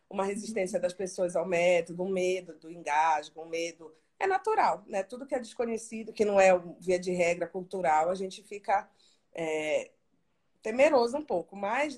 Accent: Brazilian